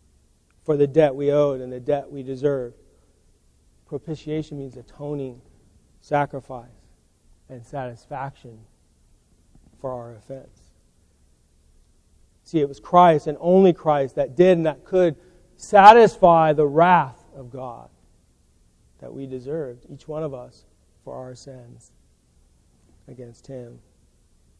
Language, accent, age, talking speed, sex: English, American, 40-59, 115 wpm, male